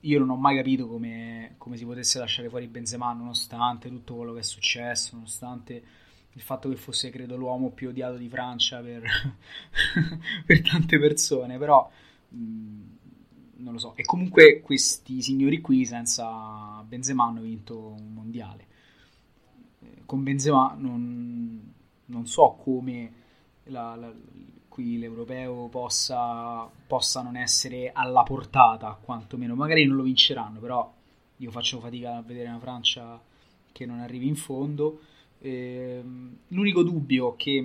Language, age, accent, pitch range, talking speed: Italian, 20-39, native, 115-135 Hz, 140 wpm